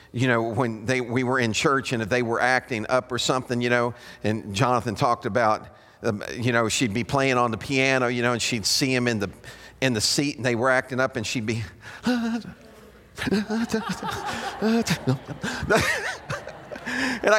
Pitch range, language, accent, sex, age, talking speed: 130-195 Hz, English, American, male, 50-69, 175 wpm